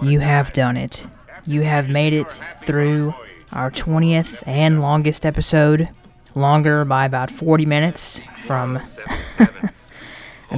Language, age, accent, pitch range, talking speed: English, 20-39, American, 130-150 Hz, 120 wpm